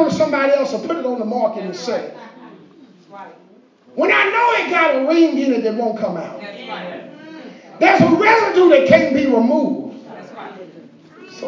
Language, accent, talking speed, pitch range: English, American, 160 wpm, 210-300 Hz